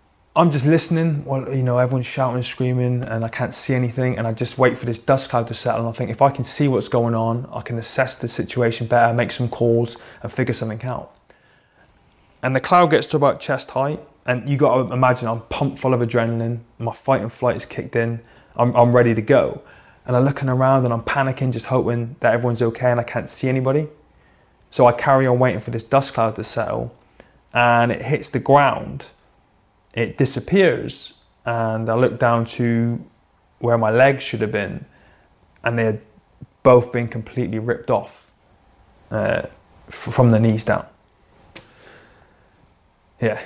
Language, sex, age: English, male, 20-39